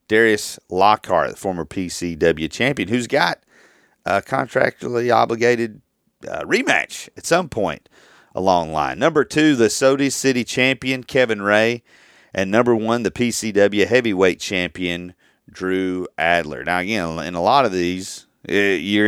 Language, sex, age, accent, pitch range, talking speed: English, male, 40-59, American, 95-125 Hz, 140 wpm